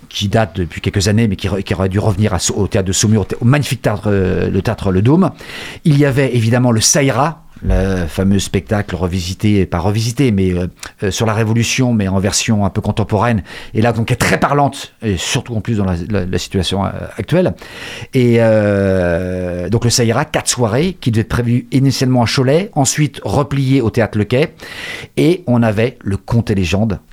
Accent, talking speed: French, 195 wpm